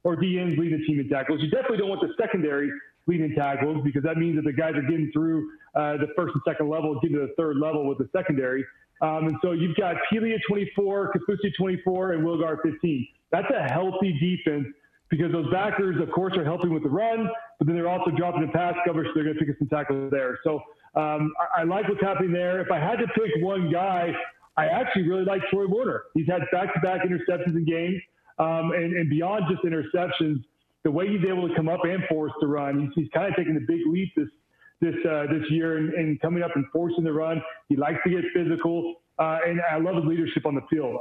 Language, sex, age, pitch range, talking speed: English, male, 40-59, 155-185 Hz, 235 wpm